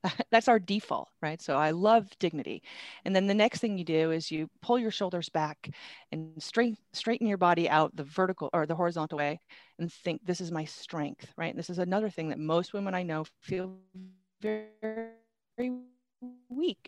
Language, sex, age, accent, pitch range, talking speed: English, female, 30-49, American, 155-205 Hz, 190 wpm